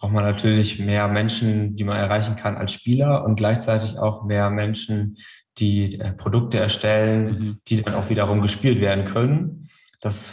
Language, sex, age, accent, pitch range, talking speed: German, male, 20-39, German, 105-115 Hz, 165 wpm